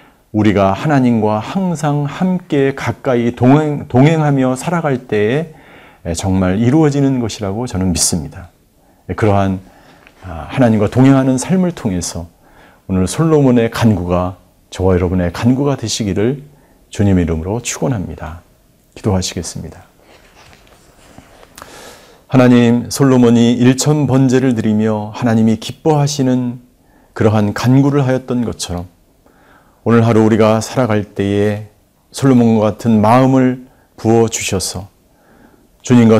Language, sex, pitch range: Korean, male, 100-130 Hz